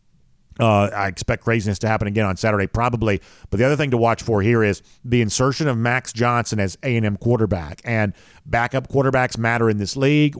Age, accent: 50-69, American